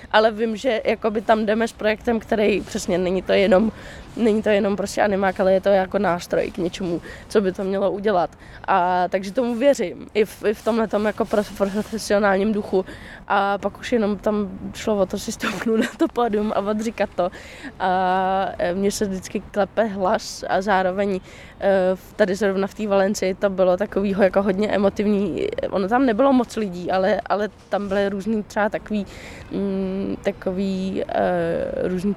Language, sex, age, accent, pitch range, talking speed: Czech, female, 20-39, native, 195-220 Hz, 160 wpm